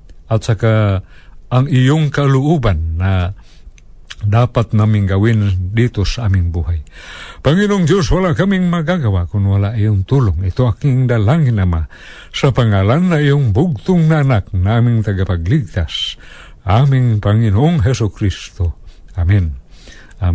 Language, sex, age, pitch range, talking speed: Filipino, male, 50-69, 105-145 Hz, 120 wpm